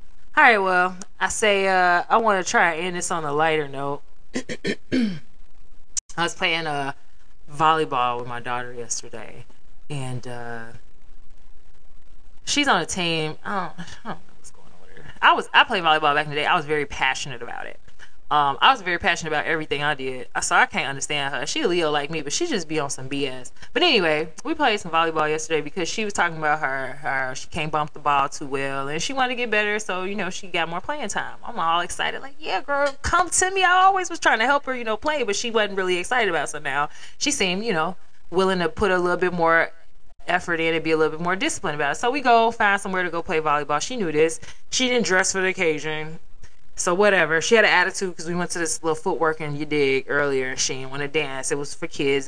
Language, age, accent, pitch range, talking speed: English, 20-39, American, 145-190 Hz, 240 wpm